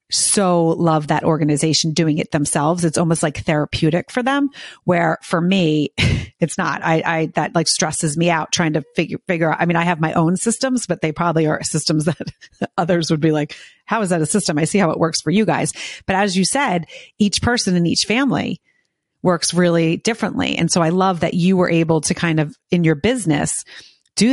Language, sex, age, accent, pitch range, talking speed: English, female, 30-49, American, 160-185 Hz, 215 wpm